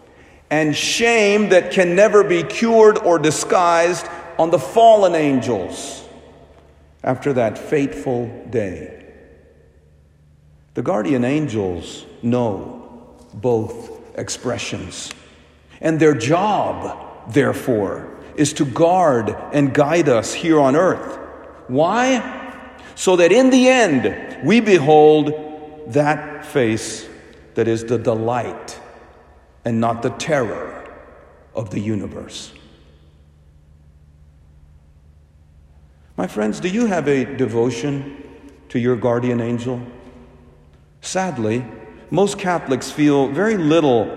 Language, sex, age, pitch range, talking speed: English, male, 50-69, 115-175 Hz, 100 wpm